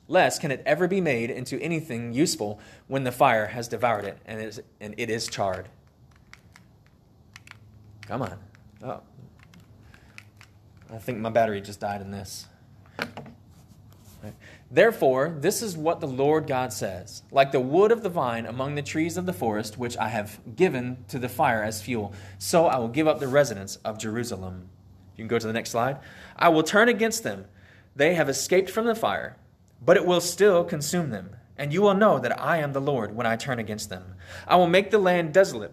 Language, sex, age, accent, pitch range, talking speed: English, male, 20-39, American, 110-160 Hz, 195 wpm